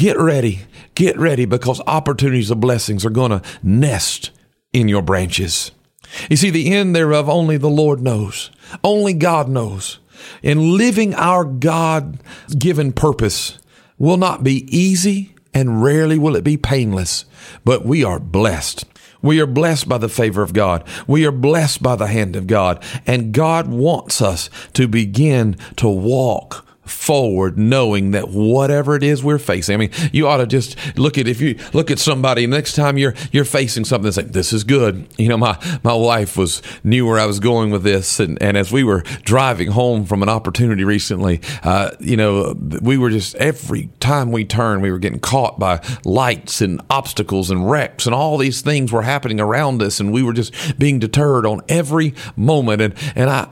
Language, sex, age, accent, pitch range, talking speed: English, male, 50-69, American, 105-145 Hz, 185 wpm